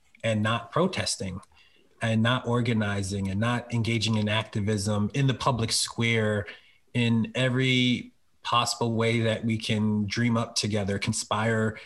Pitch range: 105-120 Hz